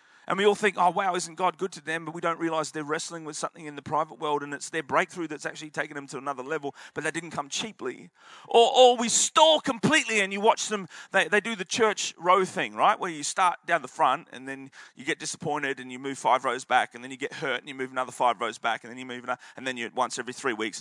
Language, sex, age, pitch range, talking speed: English, male, 30-49, 130-175 Hz, 280 wpm